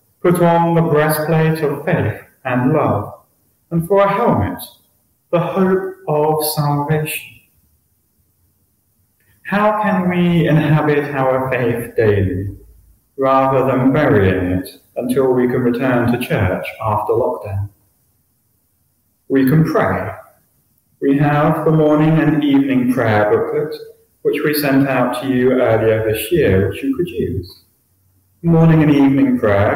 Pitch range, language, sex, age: 105-160 Hz, English, male, 30-49